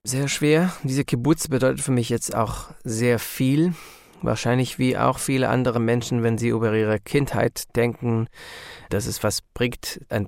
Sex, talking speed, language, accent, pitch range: male, 165 wpm, German, German, 110-120 Hz